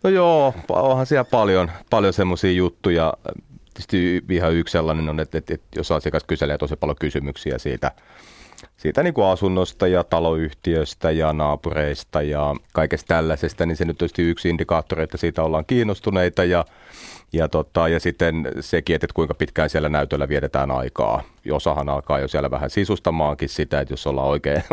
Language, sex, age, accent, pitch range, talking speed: Finnish, male, 30-49, native, 75-90 Hz, 165 wpm